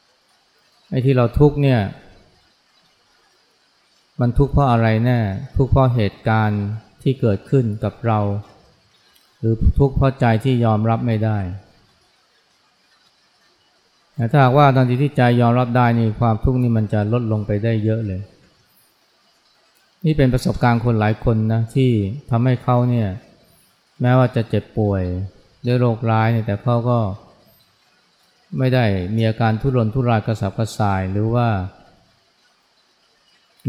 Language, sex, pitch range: Thai, male, 105-125 Hz